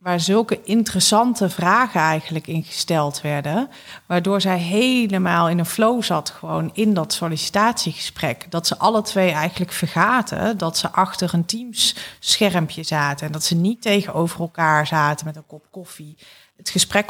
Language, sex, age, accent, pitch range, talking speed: Dutch, female, 40-59, Dutch, 165-195 Hz, 155 wpm